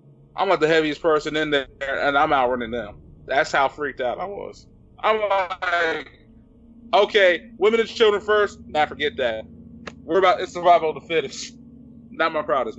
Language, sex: English, male